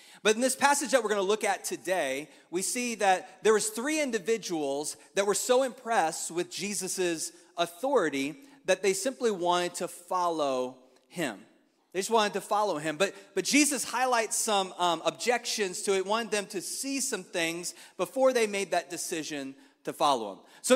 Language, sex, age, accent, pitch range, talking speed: English, male, 30-49, American, 165-220 Hz, 180 wpm